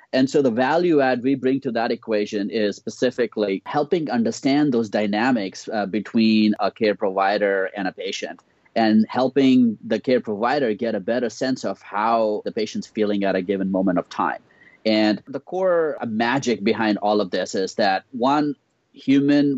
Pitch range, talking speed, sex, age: 100-130 Hz, 170 wpm, male, 30-49